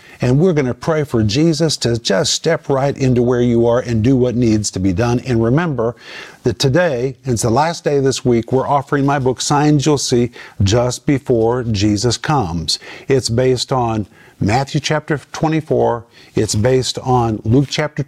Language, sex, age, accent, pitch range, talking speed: English, male, 50-69, American, 120-150 Hz, 185 wpm